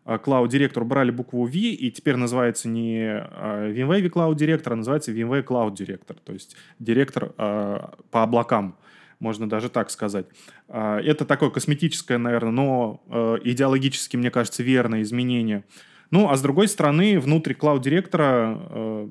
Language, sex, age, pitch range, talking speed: Russian, male, 20-39, 115-145 Hz, 135 wpm